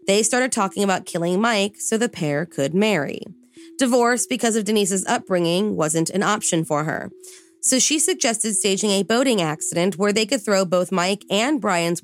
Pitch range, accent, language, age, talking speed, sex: 165-210 Hz, American, English, 30-49, 180 wpm, female